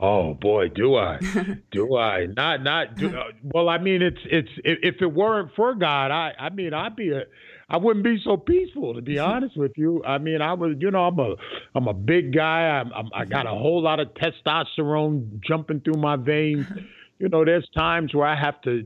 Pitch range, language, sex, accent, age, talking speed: 120-165 Hz, English, male, American, 50-69, 215 wpm